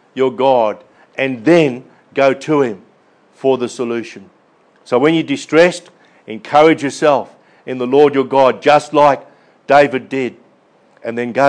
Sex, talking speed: male, 145 wpm